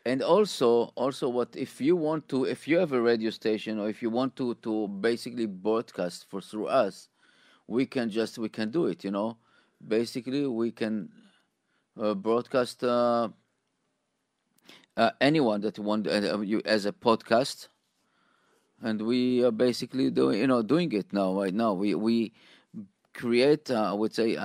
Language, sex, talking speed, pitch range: English, male, 170 wpm, 105-130 Hz